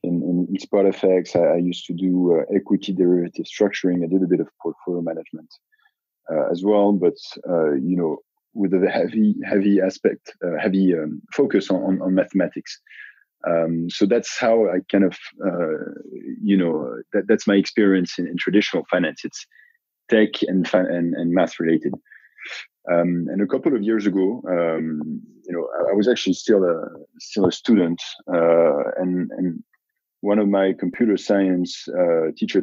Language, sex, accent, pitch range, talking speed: English, male, French, 85-100 Hz, 170 wpm